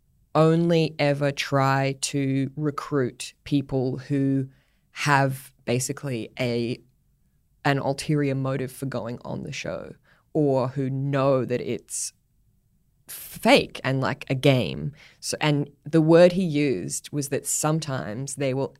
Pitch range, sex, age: 130-150 Hz, female, 20-39